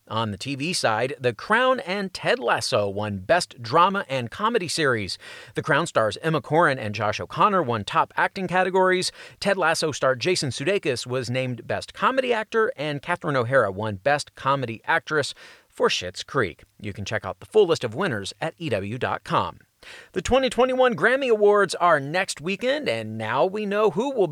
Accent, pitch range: American, 130-205 Hz